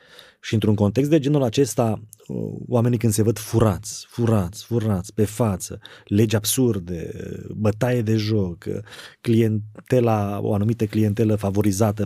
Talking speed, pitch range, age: 125 wpm, 105-120 Hz, 30-49